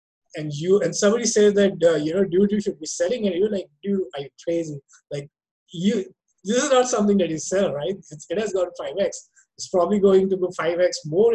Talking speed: 225 wpm